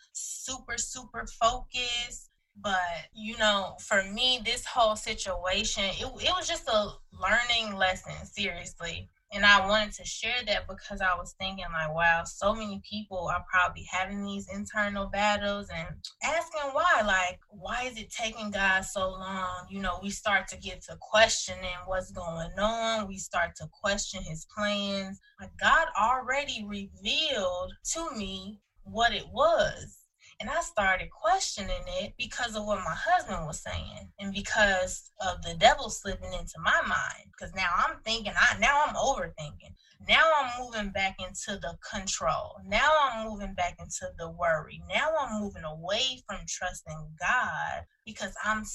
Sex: female